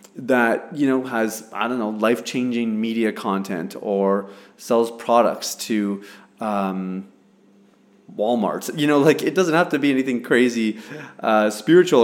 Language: English